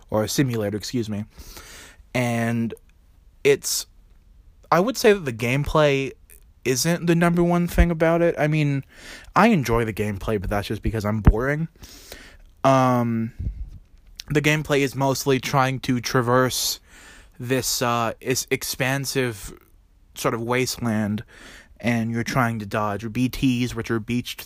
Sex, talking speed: male, 135 wpm